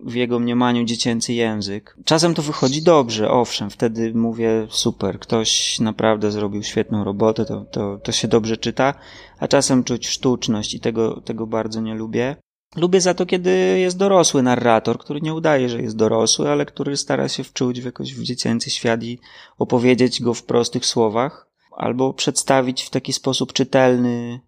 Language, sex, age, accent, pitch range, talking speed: Polish, male, 20-39, native, 115-135 Hz, 165 wpm